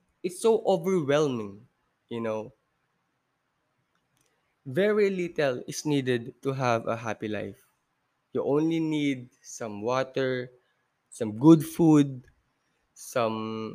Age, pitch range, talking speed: 20-39, 125-175 Hz, 100 wpm